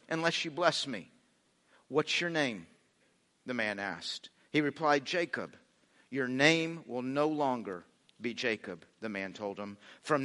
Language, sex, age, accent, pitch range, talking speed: English, male, 50-69, American, 140-190 Hz, 145 wpm